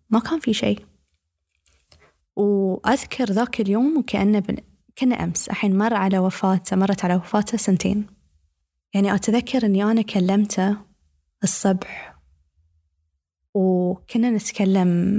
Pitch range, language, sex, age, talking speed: 175-210 Hz, Arabic, female, 20-39, 110 wpm